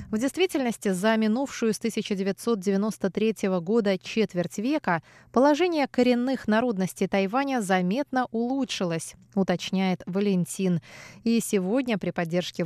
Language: Russian